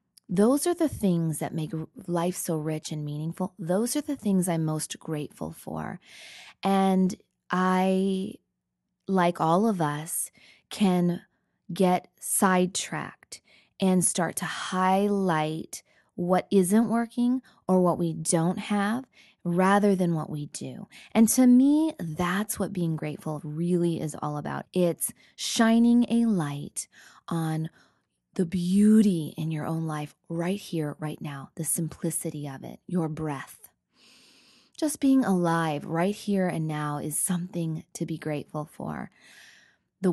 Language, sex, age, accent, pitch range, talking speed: English, female, 20-39, American, 155-195 Hz, 135 wpm